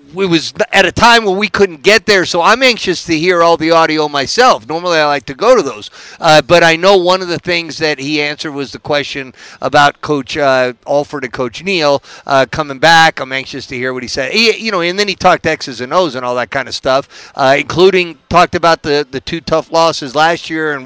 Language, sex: English, male